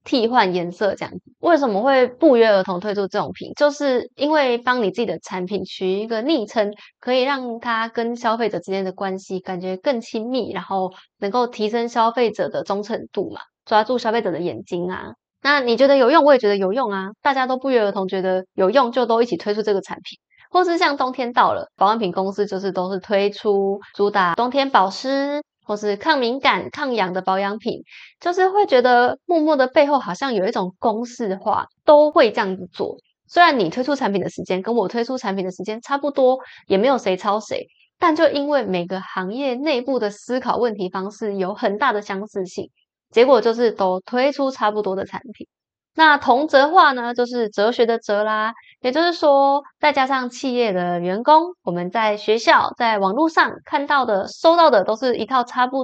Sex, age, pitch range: female, 20-39, 195-270 Hz